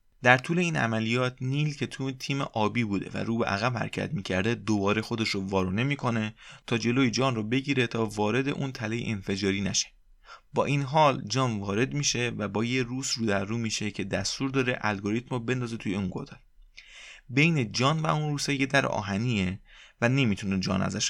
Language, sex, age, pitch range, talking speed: Persian, male, 20-39, 105-130 Hz, 180 wpm